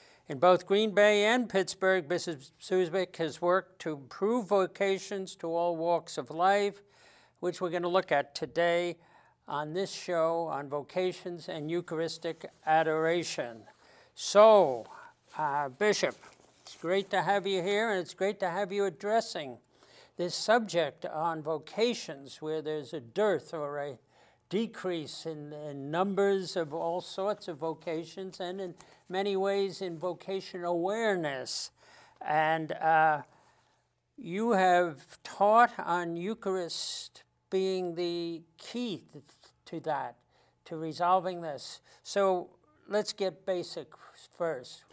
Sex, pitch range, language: male, 160-195 Hz, English